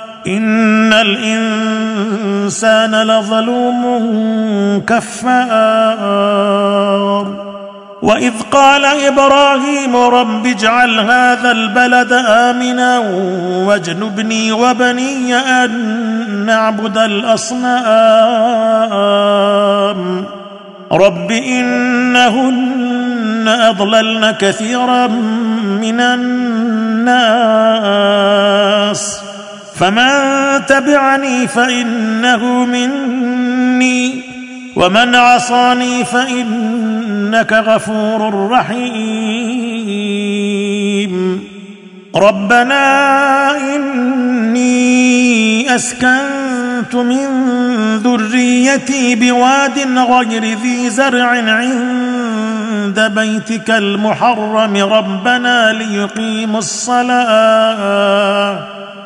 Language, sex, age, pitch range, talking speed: Arabic, male, 50-69, 210-245 Hz, 50 wpm